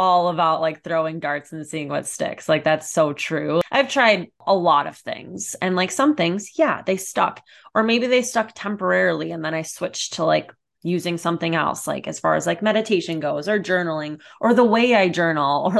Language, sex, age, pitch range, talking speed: English, female, 20-39, 160-230 Hz, 210 wpm